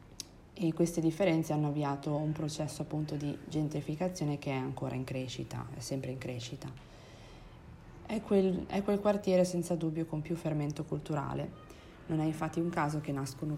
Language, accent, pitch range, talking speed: Italian, native, 140-165 Hz, 160 wpm